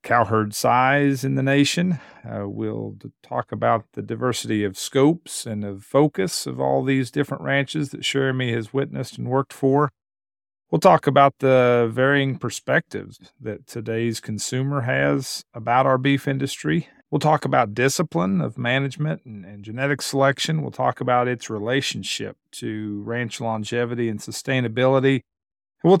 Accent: American